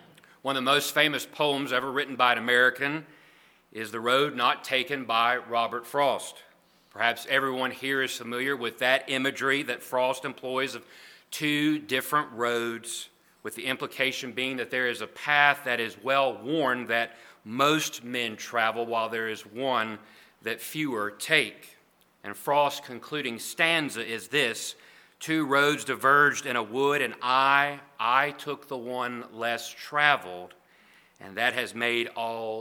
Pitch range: 120-155 Hz